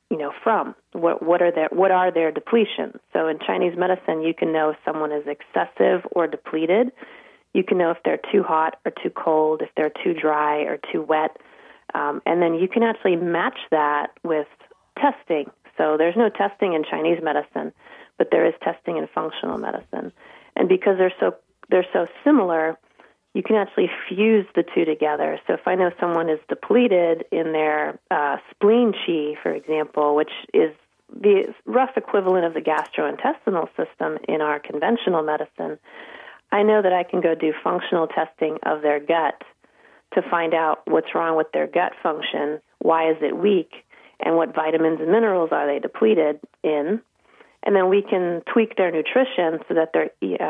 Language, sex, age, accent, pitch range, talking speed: English, female, 30-49, American, 155-195 Hz, 180 wpm